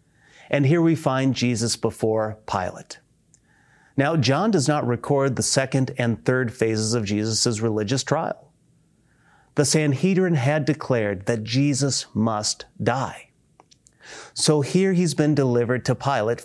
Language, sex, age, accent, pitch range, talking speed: English, male, 30-49, American, 115-150 Hz, 130 wpm